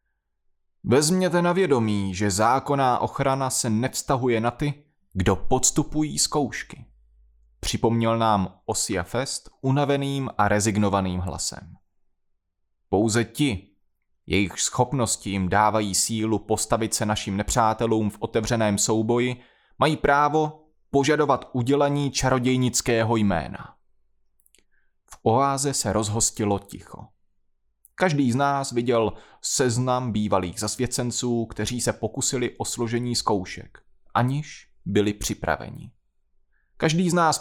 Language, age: Czech, 30-49